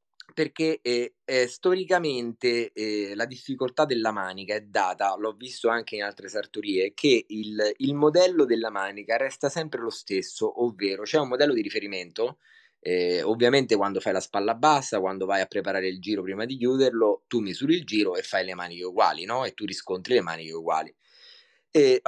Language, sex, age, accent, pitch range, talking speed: English, male, 20-39, Italian, 110-180 Hz, 180 wpm